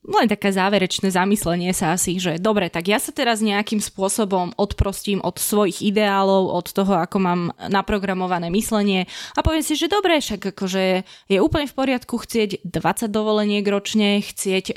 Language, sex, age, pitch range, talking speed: Slovak, female, 20-39, 185-225 Hz, 165 wpm